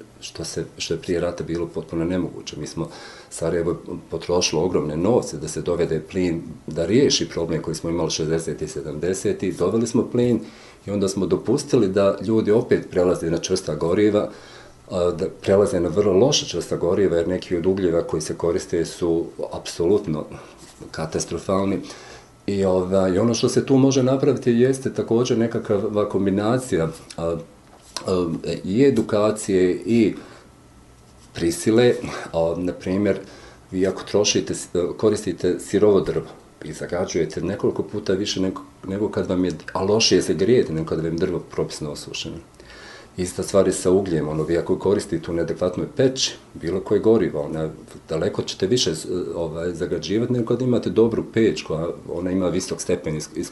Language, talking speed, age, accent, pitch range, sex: English, 145 wpm, 50-69, Bosnian, 85-110 Hz, male